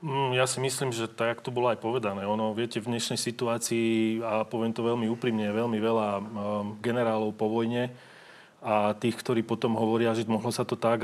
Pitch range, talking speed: 115-125 Hz, 190 wpm